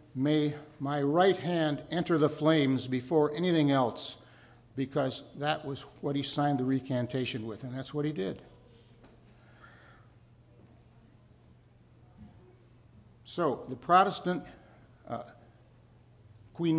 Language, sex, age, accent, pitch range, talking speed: English, male, 60-79, American, 130-160 Hz, 105 wpm